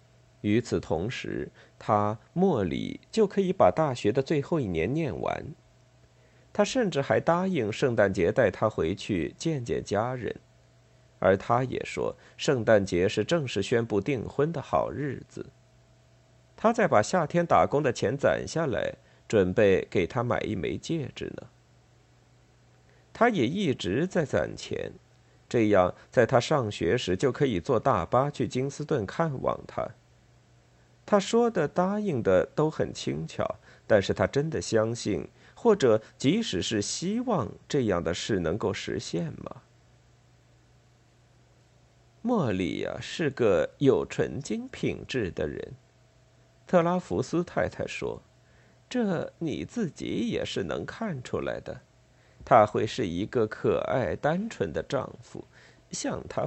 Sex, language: male, Chinese